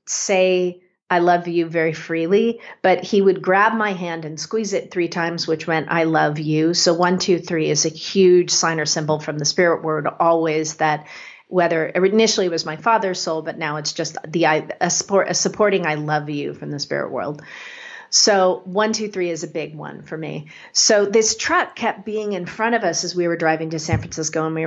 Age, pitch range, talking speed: 40-59, 165-205 Hz, 215 wpm